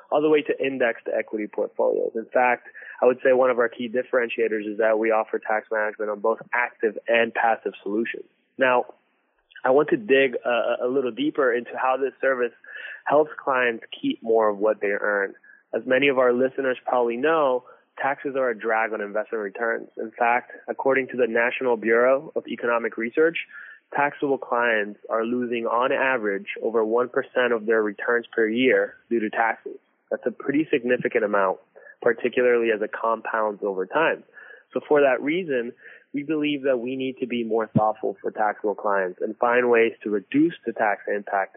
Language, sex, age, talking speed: English, male, 20-39, 180 wpm